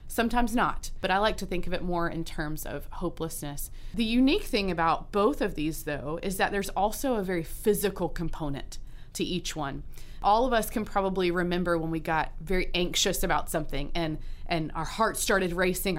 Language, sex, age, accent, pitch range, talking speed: English, female, 30-49, American, 165-200 Hz, 195 wpm